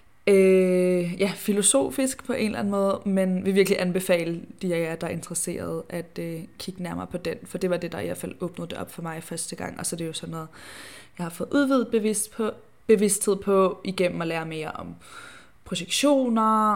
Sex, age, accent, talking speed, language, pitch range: female, 20-39, native, 215 wpm, Danish, 175-205 Hz